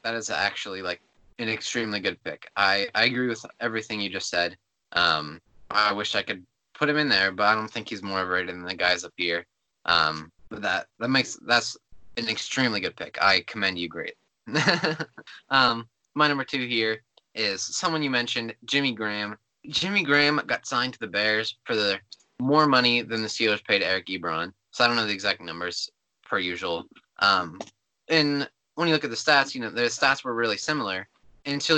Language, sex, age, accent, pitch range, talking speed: English, male, 20-39, American, 105-135 Hz, 195 wpm